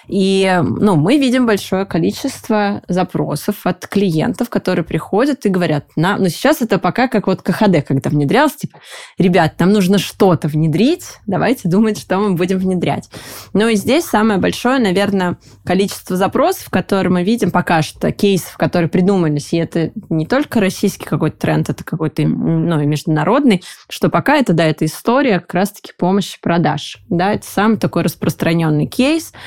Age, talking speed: 20-39, 165 wpm